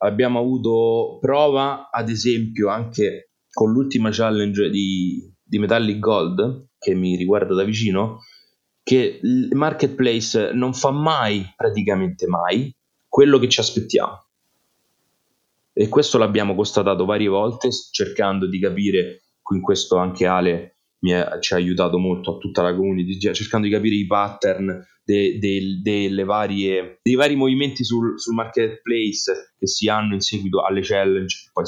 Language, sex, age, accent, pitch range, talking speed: Italian, male, 30-49, native, 95-120 Hz, 145 wpm